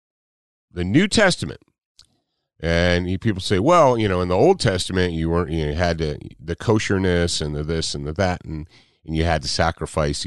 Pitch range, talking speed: 75-115 Hz, 195 wpm